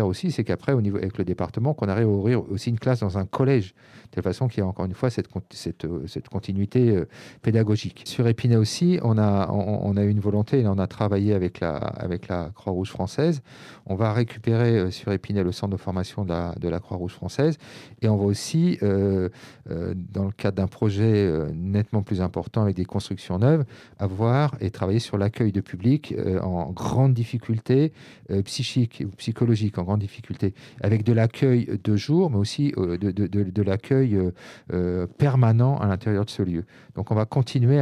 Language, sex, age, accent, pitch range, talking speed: French, male, 40-59, French, 100-120 Hz, 210 wpm